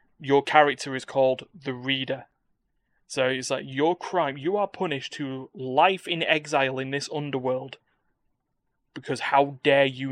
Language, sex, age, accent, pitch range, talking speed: English, male, 20-39, British, 130-145 Hz, 150 wpm